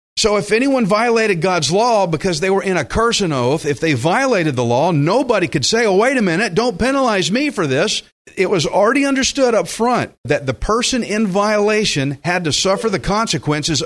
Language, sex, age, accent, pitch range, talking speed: English, male, 50-69, American, 145-195 Hz, 205 wpm